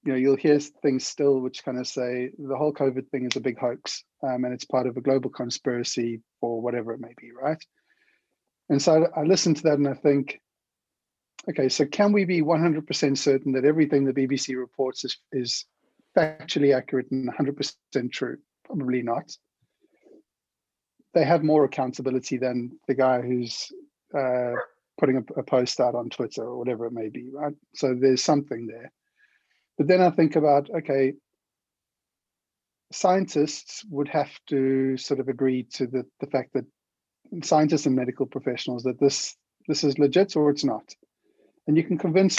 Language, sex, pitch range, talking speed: English, male, 130-150 Hz, 175 wpm